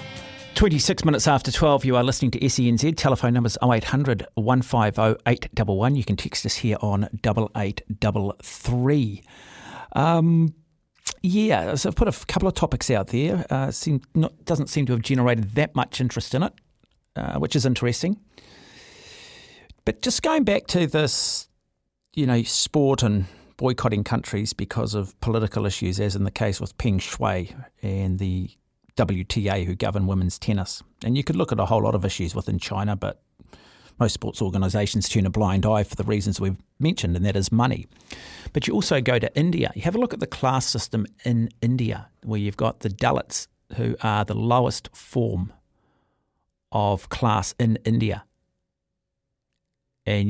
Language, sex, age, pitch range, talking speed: English, male, 40-59, 105-130 Hz, 165 wpm